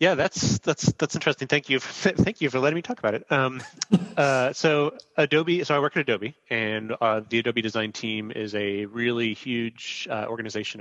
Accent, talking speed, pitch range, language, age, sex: American, 205 wpm, 105-130 Hz, English, 30-49, male